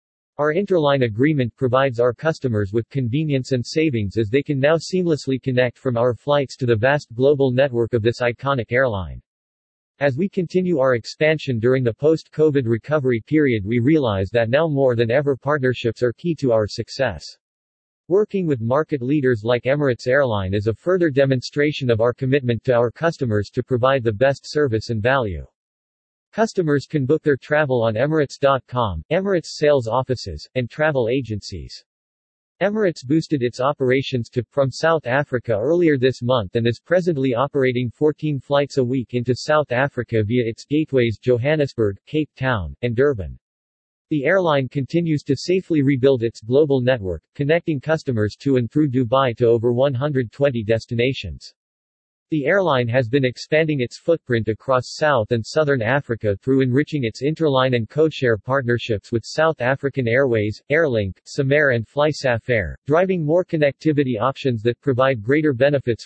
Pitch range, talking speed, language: 115-150 Hz, 155 wpm, English